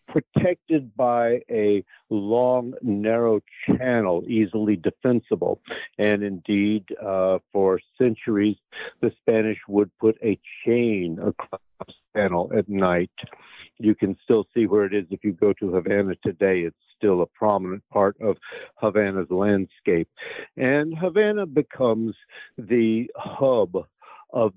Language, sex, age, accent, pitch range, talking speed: English, male, 60-79, American, 100-120 Hz, 125 wpm